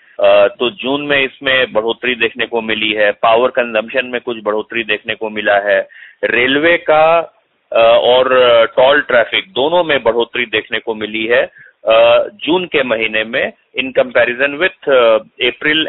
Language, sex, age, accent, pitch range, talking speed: Hindi, male, 30-49, native, 110-145 Hz, 160 wpm